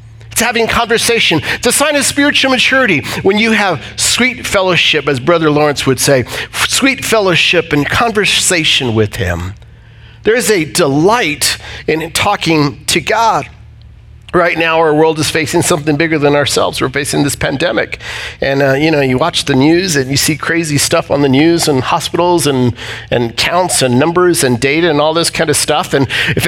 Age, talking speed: 50-69, 180 wpm